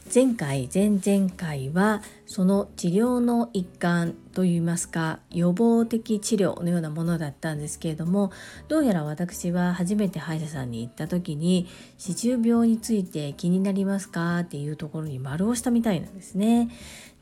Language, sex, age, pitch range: Japanese, female, 40-59, 160-215 Hz